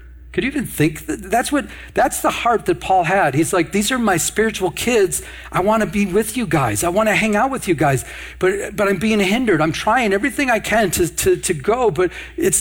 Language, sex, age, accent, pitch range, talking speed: English, male, 50-69, American, 155-215 Hz, 240 wpm